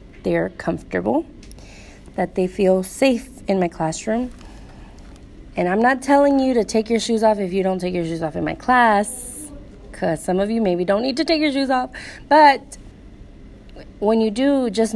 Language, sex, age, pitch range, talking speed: English, female, 20-39, 180-220 Hz, 185 wpm